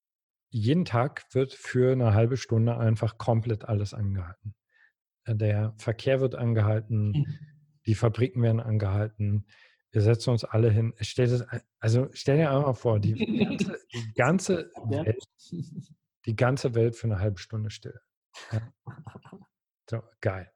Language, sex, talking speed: German, male, 115 wpm